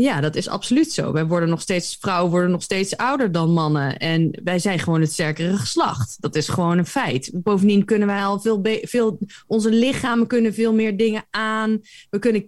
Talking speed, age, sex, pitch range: 210 wpm, 20-39, female, 195-245 Hz